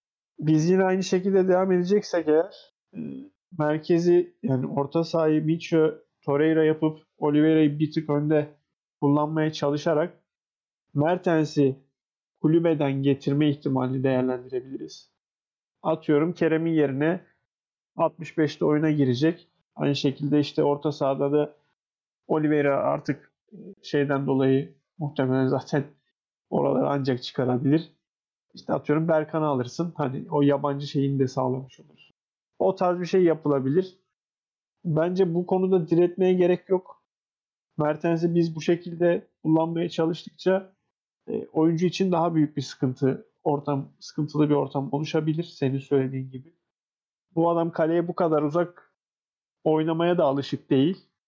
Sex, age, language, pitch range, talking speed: male, 40-59, Turkish, 145-170 Hz, 115 wpm